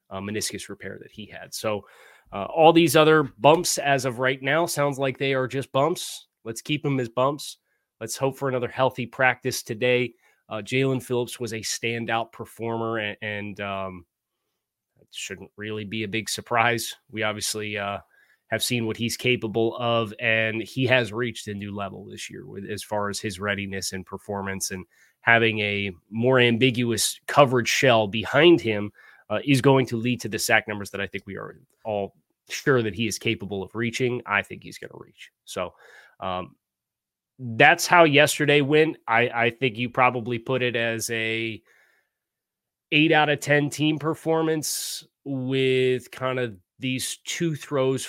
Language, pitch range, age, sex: English, 100-130 Hz, 20-39, male